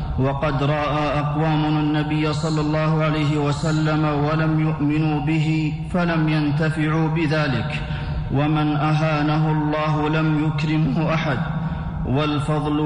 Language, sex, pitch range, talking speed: Arabic, male, 145-155 Hz, 105 wpm